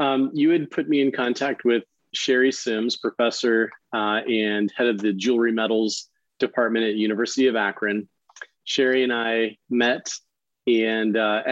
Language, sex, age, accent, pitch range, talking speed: English, male, 30-49, American, 110-130 Hz, 150 wpm